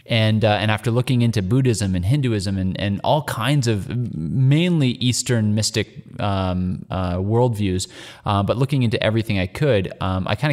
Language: English